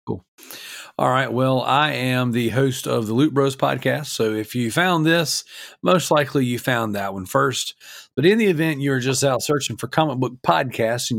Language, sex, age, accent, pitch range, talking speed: English, male, 40-59, American, 115-140 Hz, 205 wpm